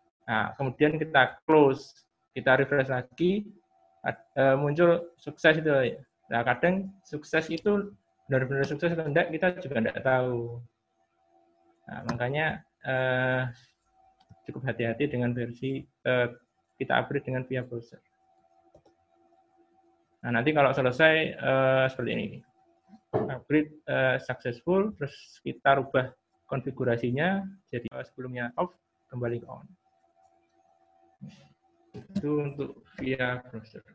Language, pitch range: Indonesian, 120-160 Hz